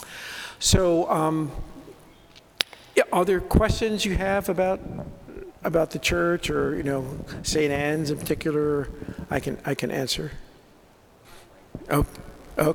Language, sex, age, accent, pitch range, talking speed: English, male, 50-69, American, 140-170 Hz, 120 wpm